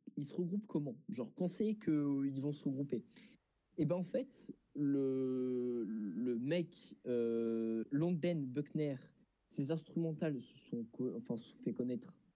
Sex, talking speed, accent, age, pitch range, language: male, 150 wpm, French, 20-39, 125-180 Hz, French